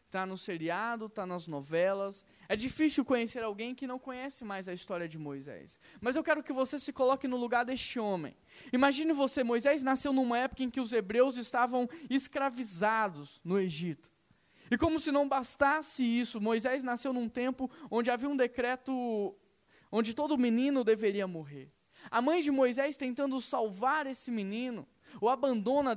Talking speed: 165 wpm